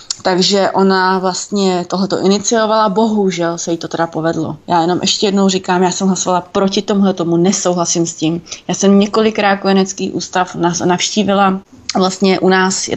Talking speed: 155 wpm